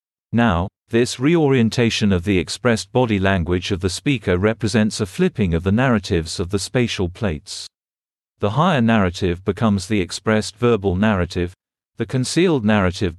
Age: 50-69